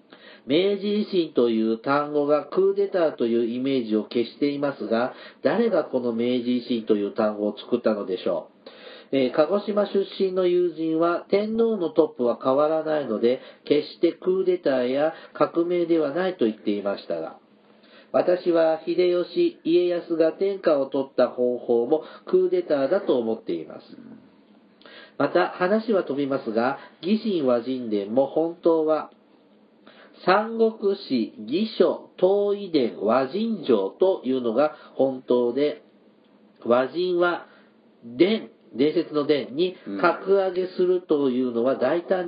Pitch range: 130-190 Hz